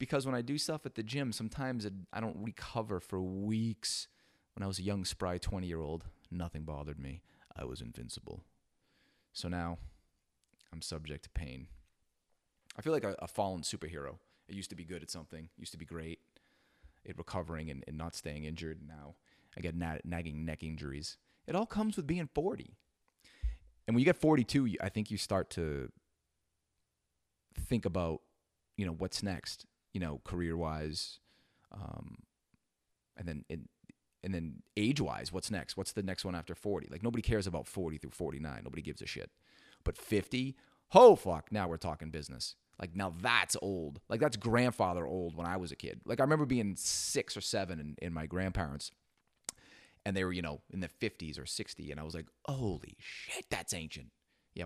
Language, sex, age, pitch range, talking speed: English, male, 30-49, 80-105 Hz, 180 wpm